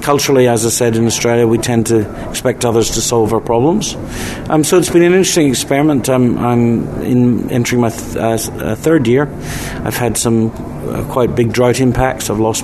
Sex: male